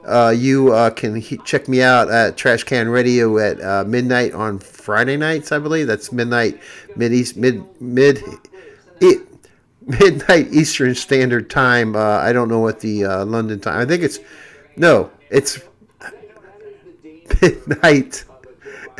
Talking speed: 140 wpm